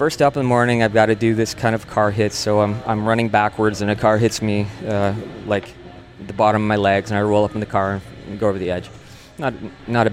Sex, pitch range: male, 105-145 Hz